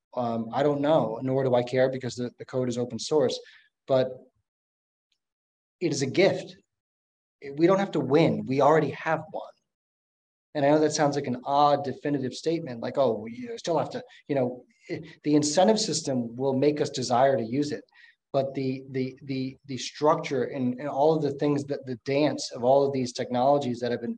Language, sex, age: English, male, 20-39